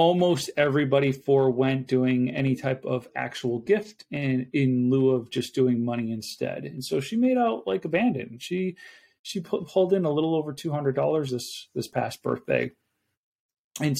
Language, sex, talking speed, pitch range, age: English, male, 165 wpm, 130-165 Hz, 40-59